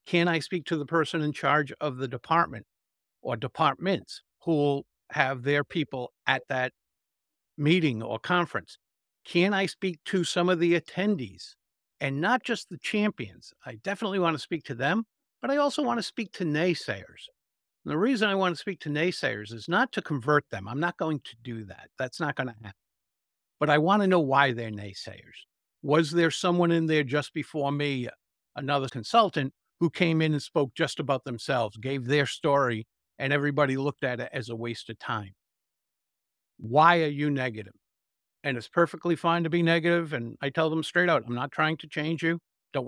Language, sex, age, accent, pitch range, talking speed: English, male, 60-79, American, 125-170 Hz, 195 wpm